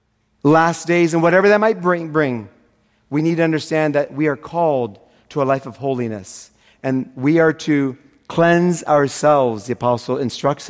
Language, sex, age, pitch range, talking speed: English, male, 40-59, 120-165 Hz, 170 wpm